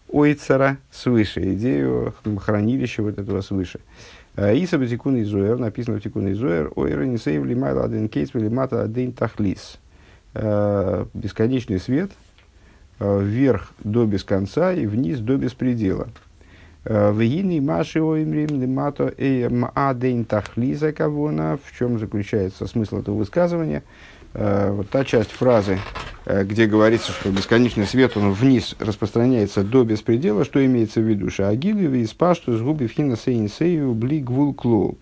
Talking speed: 130 wpm